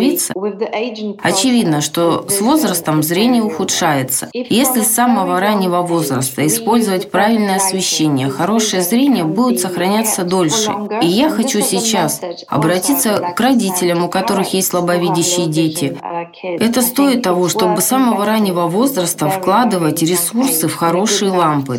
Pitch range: 165-205 Hz